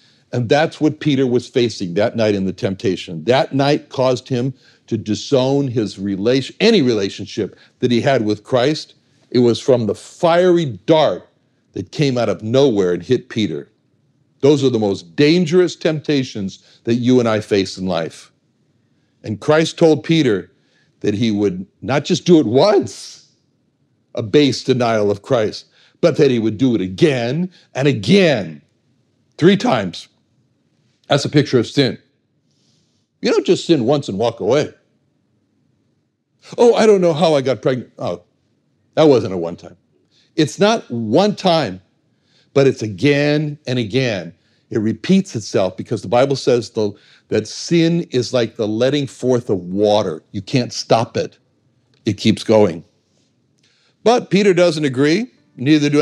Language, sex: English, male